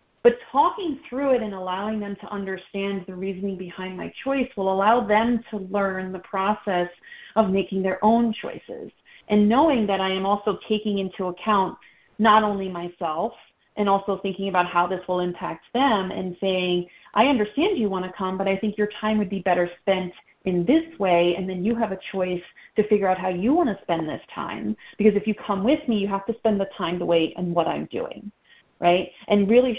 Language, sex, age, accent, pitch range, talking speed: English, female, 30-49, American, 180-210 Hz, 210 wpm